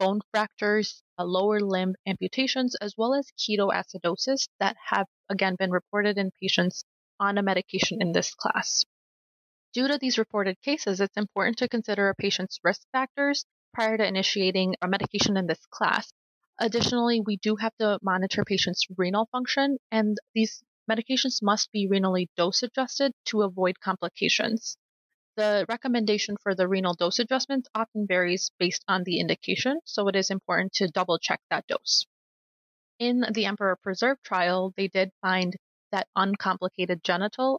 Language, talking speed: English, 150 wpm